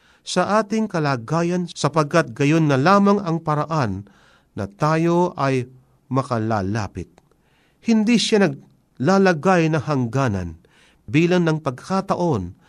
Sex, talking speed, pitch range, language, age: male, 100 wpm, 120-175 Hz, Filipino, 50-69